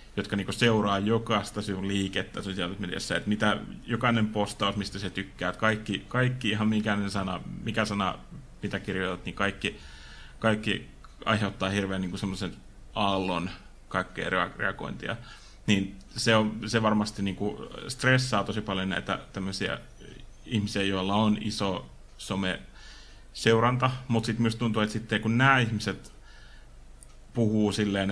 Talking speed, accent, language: 130 wpm, native, Finnish